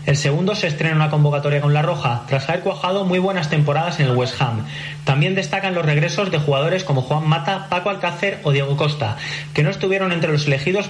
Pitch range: 140-180 Hz